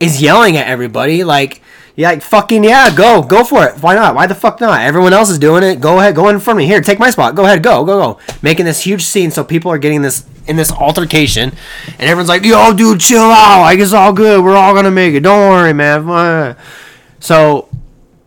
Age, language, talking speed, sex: 20-39, English, 235 wpm, male